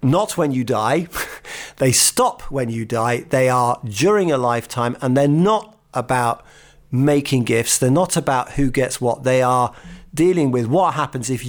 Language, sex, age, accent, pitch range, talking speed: English, male, 40-59, British, 120-145 Hz, 170 wpm